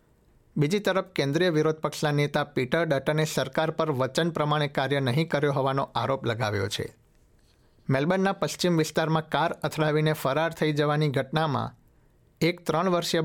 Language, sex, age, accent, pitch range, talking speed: Gujarati, male, 60-79, native, 130-155 Hz, 140 wpm